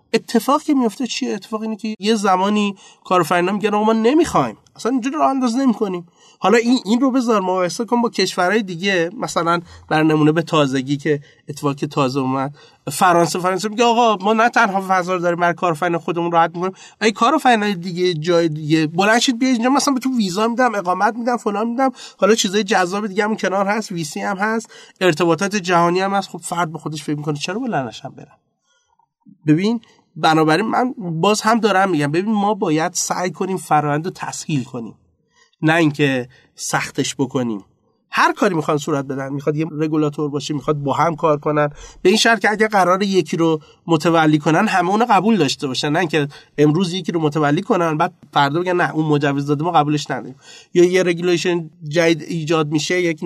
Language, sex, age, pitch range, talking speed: Persian, male, 30-49, 155-220 Hz, 190 wpm